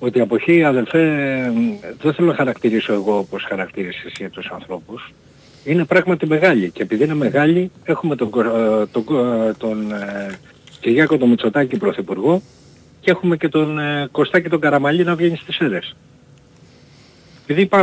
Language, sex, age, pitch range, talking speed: Greek, male, 60-79, 115-175 Hz, 140 wpm